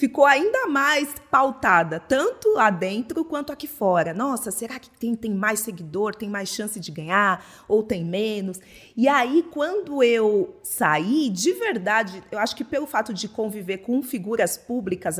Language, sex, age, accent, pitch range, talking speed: Portuguese, female, 30-49, Brazilian, 215-310 Hz, 165 wpm